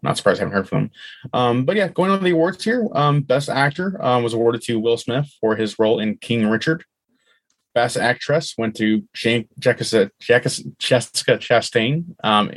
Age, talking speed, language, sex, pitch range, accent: 20-39, 195 wpm, English, male, 110-140 Hz, American